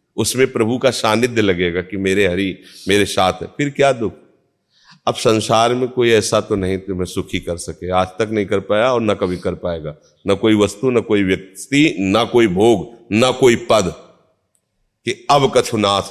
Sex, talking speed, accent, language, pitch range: male, 185 wpm, native, Hindi, 90-110 Hz